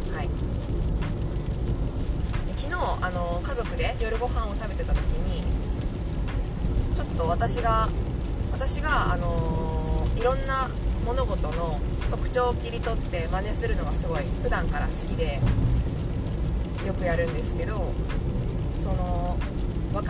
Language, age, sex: Japanese, 20-39, female